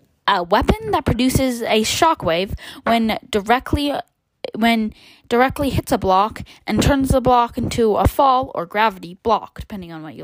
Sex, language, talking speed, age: female, English, 160 wpm, 10-29